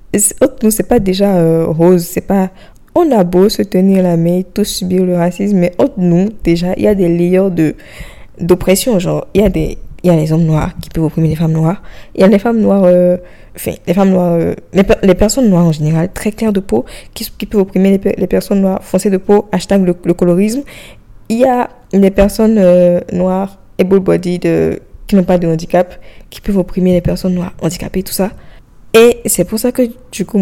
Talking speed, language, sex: 225 wpm, French, female